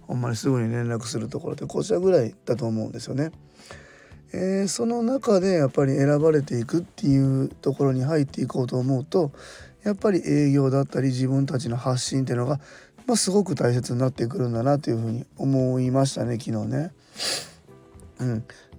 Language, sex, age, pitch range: Japanese, male, 20-39, 120-160 Hz